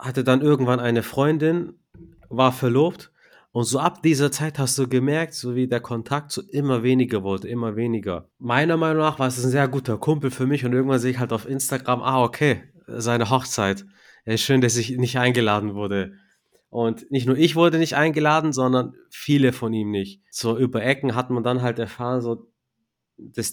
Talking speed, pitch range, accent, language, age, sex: 195 wpm, 115-130 Hz, German, German, 30-49, male